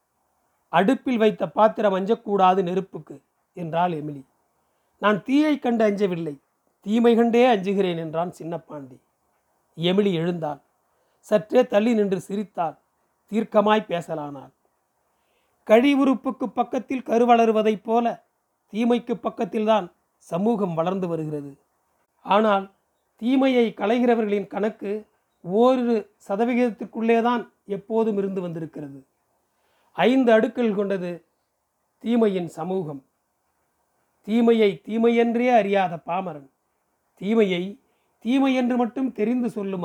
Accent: native